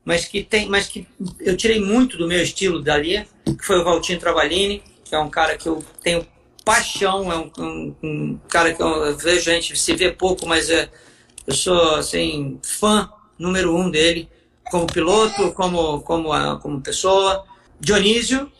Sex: male